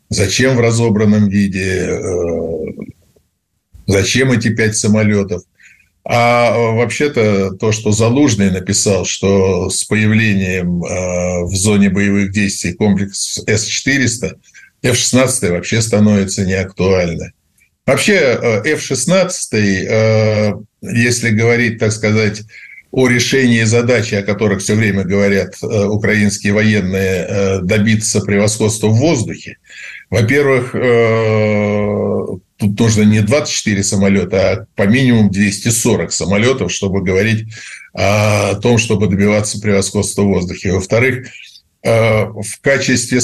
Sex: male